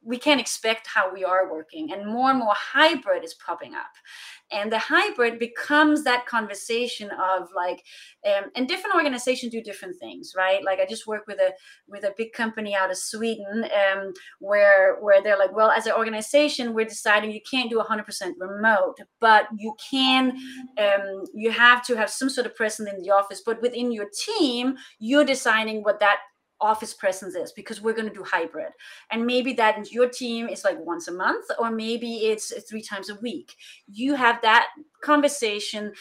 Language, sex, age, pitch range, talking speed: English, female, 30-49, 205-260 Hz, 195 wpm